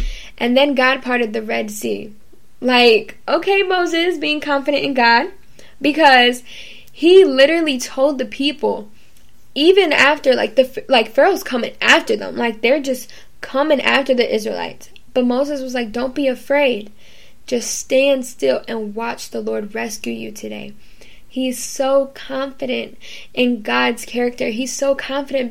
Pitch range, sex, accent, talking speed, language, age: 230-275 Hz, female, American, 145 wpm, English, 10-29